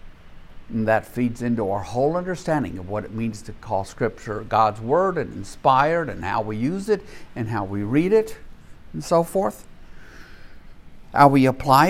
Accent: American